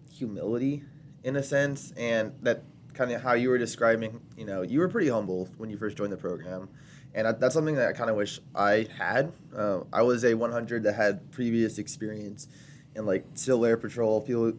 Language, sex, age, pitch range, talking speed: English, male, 20-39, 105-140 Hz, 200 wpm